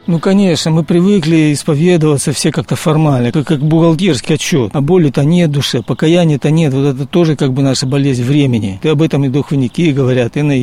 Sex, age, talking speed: male, 50-69, 200 wpm